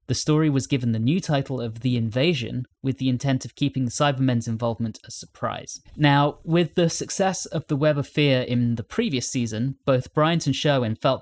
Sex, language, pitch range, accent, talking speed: male, English, 115-150 Hz, British, 205 wpm